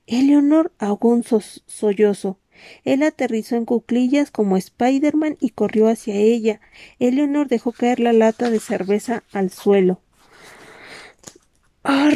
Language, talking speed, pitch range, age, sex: Spanish, 120 wpm, 205-255 Hz, 40-59, female